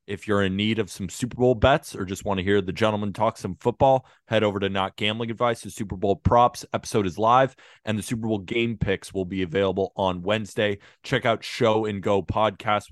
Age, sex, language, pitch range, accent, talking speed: 30-49, male, English, 95-110 Hz, American, 225 wpm